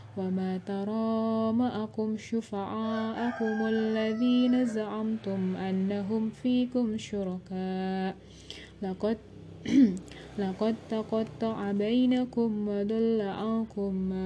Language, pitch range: Indonesian, 190-225 Hz